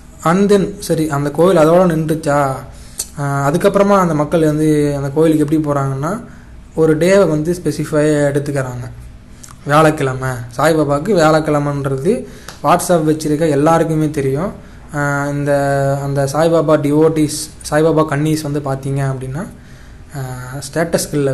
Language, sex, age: Tamil, male, 20-39